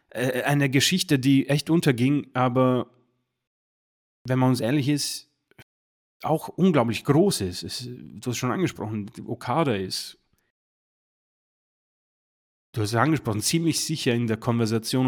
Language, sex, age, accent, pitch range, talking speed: German, male, 30-49, German, 110-130 Hz, 125 wpm